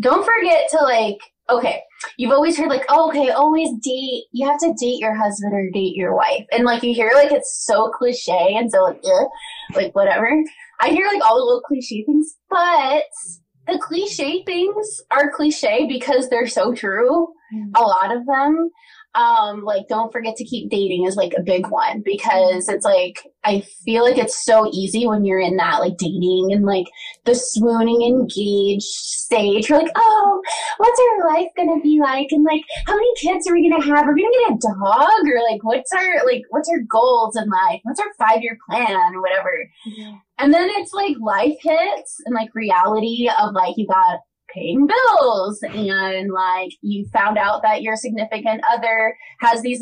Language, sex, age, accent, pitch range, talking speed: English, female, 20-39, American, 220-310 Hz, 190 wpm